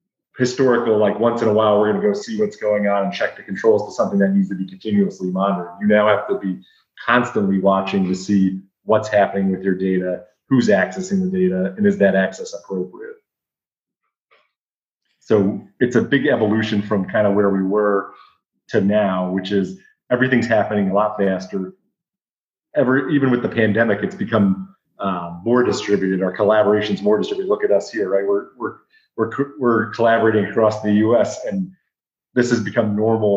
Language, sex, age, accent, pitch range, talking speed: English, male, 30-49, American, 100-120 Hz, 180 wpm